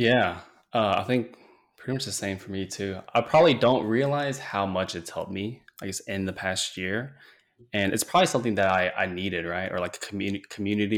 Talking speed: 215 wpm